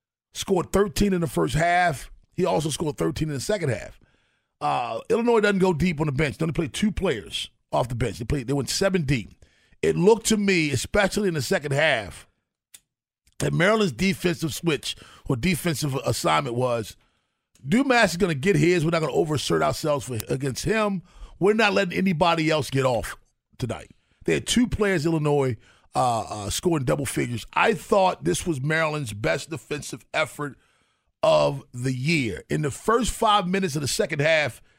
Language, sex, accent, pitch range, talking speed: English, male, American, 140-195 Hz, 185 wpm